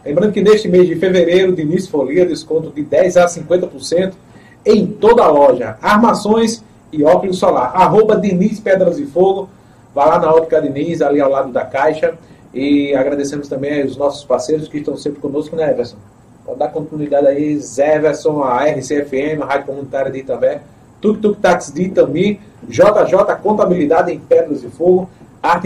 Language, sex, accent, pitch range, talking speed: Portuguese, male, Brazilian, 145-185 Hz, 165 wpm